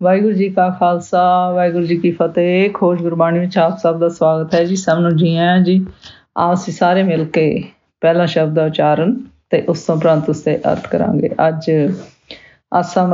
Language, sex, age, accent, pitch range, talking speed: English, female, 50-69, Indian, 170-205 Hz, 180 wpm